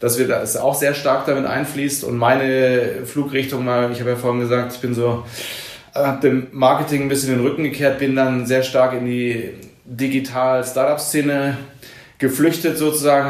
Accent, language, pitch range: German, German, 125-140 Hz